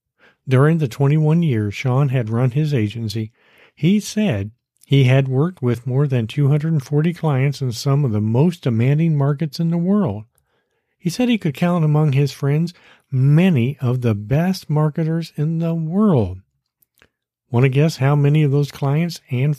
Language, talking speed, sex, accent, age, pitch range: English, 165 wpm, male, American, 50-69, 125-160 Hz